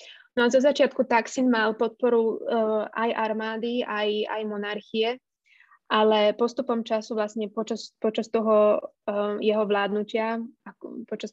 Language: Slovak